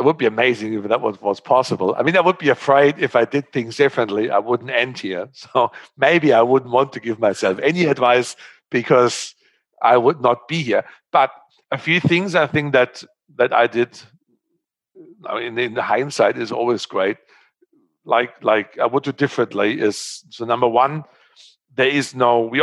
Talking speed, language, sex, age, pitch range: 190 wpm, English, male, 50-69, 110-140 Hz